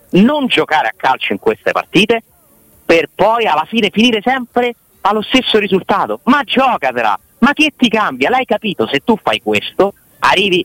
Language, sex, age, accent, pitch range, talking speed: Italian, male, 40-59, native, 145-235 Hz, 165 wpm